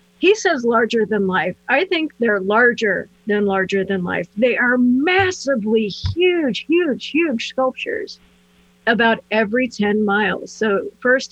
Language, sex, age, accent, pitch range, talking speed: English, female, 50-69, American, 205-260 Hz, 140 wpm